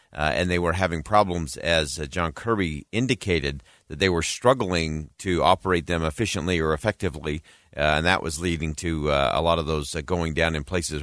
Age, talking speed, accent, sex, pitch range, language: 40-59, 200 wpm, American, male, 80-100 Hz, English